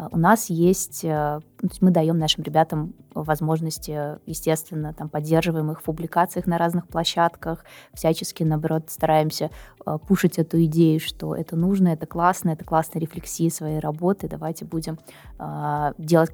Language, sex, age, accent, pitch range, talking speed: Russian, female, 20-39, native, 155-170 Hz, 130 wpm